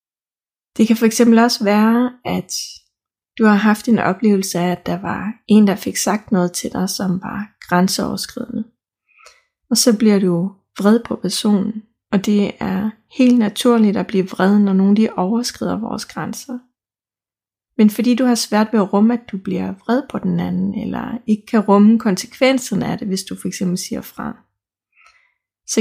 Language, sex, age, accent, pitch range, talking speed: Danish, female, 30-49, native, 190-230 Hz, 170 wpm